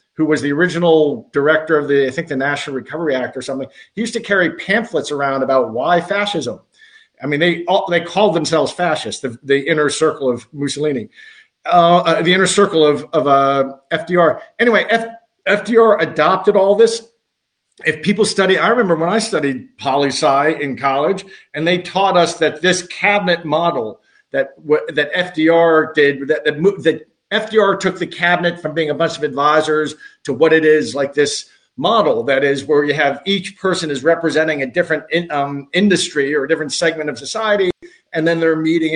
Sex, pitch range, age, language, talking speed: male, 150-195 Hz, 50-69, English, 190 wpm